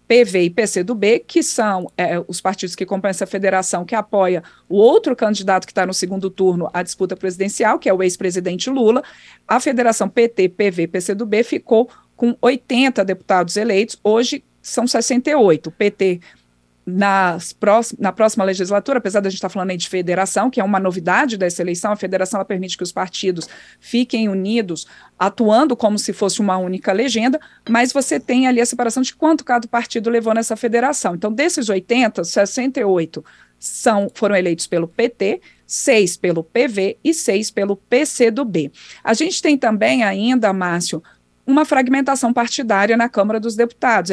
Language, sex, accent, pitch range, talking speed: Portuguese, female, Brazilian, 185-240 Hz, 170 wpm